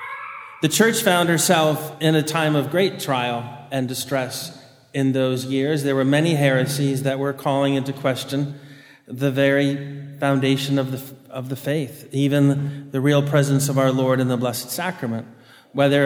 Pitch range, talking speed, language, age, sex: 135-155 Hz, 165 wpm, English, 40-59, male